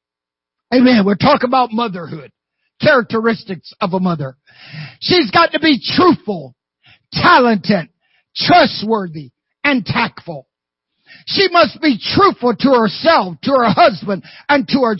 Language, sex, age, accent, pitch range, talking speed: English, male, 50-69, American, 185-305 Hz, 120 wpm